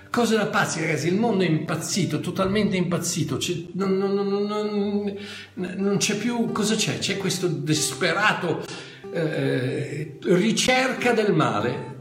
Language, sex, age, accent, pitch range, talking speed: Italian, male, 60-79, native, 130-195 Hz, 135 wpm